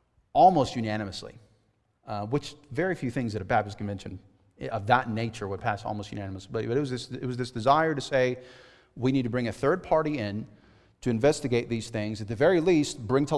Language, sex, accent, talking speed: English, male, American, 195 wpm